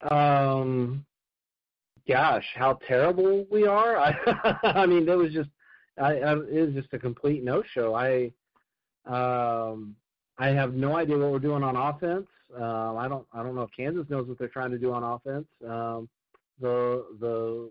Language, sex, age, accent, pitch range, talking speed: English, male, 40-59, American, 115-140 Hz, 185 wpm